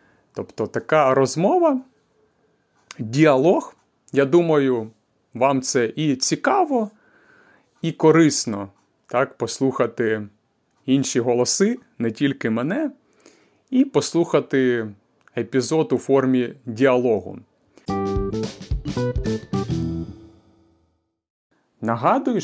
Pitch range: 120-165 Hz